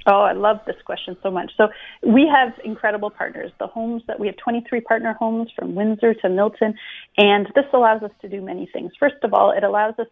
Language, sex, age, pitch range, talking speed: English, female, 30-49, 180-225 Hz, 225 wpm